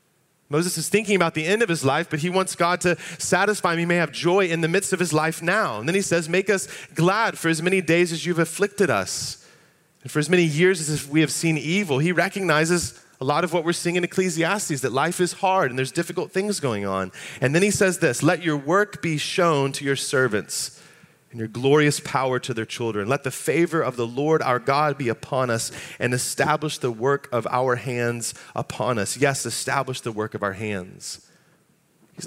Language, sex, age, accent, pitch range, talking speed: English, male, 30-49, American, 125-170 Hz, 225 wpm